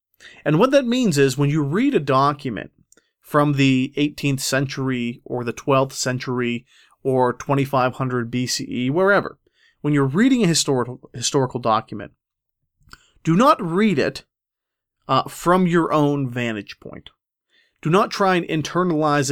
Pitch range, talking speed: 125-170 Hz, 135 wpm